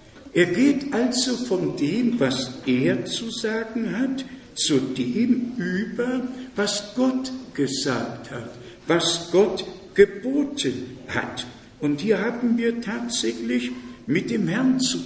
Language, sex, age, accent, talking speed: German, male, 60-79, German, 120 wpm